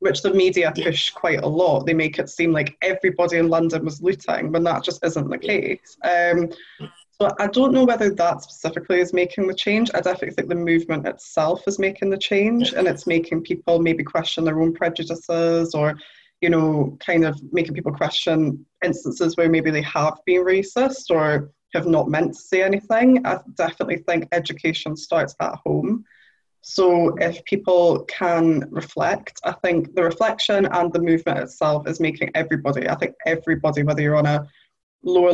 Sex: female